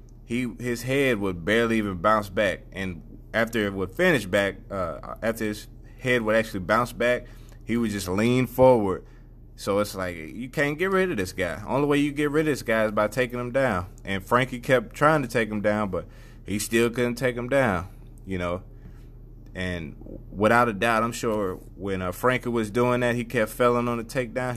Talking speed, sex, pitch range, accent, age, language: 210 wpm, male, 100-120 Hz, American, 20-39, English